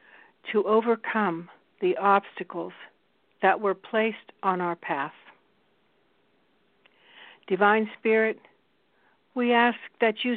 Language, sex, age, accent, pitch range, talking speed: English, female, 60-79, American, 190-225 Hz, 95 wpm